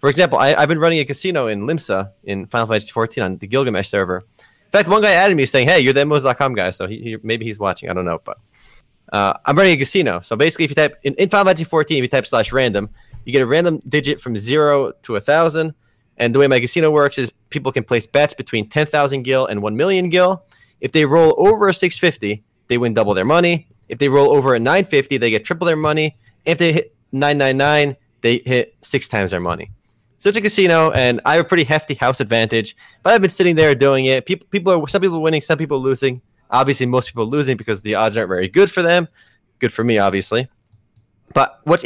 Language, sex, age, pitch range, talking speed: English, male, 20-39, 115-165 Hz, 240 wpm